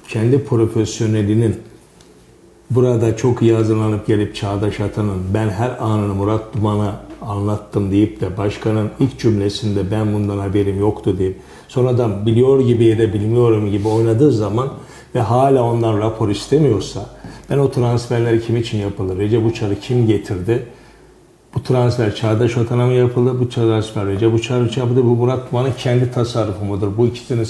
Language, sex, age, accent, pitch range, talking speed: Turkish, male, 50-69, native, 110-125 Hz, 145 wpm